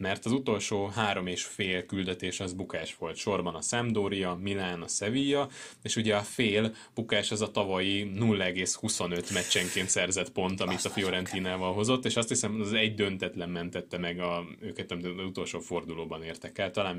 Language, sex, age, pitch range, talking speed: Hungarian, male, 20-39, 90-110 Hz, 170 wpm